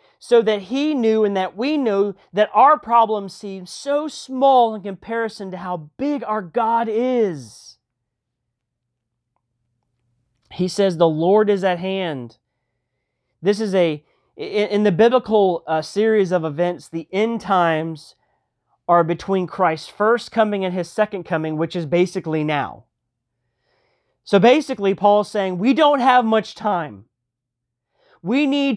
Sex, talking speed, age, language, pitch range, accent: male, 135 wpm, 30-49, English, 165-225 Hz, American